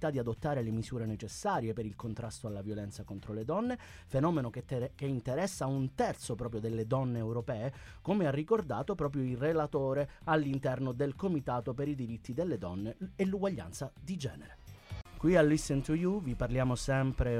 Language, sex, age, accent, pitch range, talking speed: Italian, male, 30-49, native, 105-135 Hz, 170 wpm